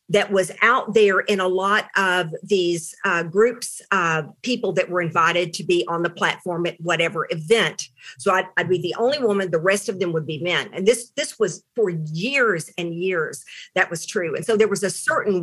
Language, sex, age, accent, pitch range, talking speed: English, female, 50-69, American, 185-250 Hz, 215 wpm